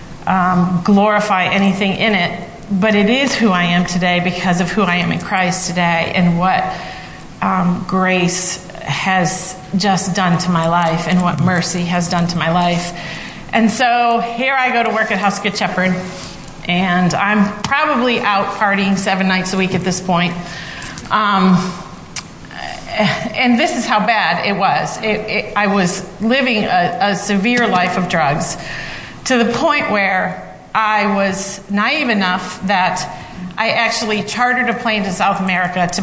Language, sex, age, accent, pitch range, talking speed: English, female, 40-59, American, 180-210 Hz, 165 wpm